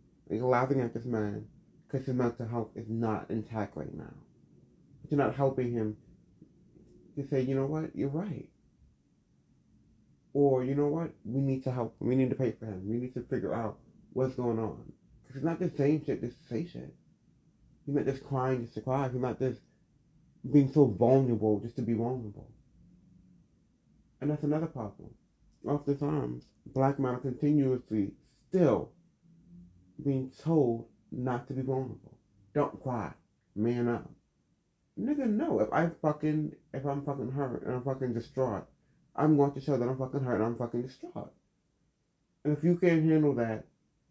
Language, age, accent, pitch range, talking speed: English, 30-49, American, 115-140 Hz, 170 wpm